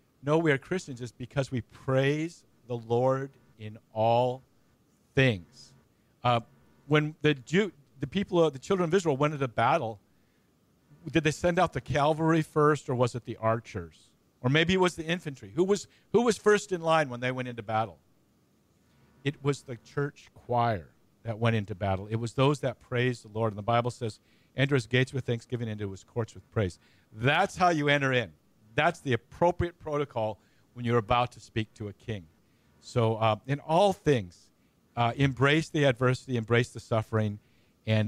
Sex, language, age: male, English, 50-69